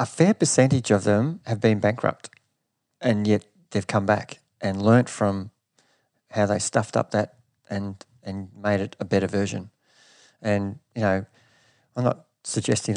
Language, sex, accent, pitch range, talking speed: English, male, Australian, 105-125 Hz, 155 wpm